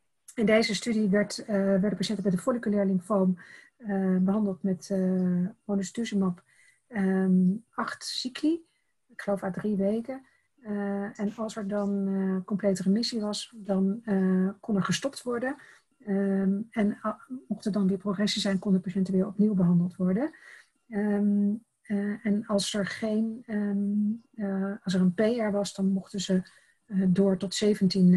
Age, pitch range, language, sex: 40-59, 190-210 Hz, Dutch, female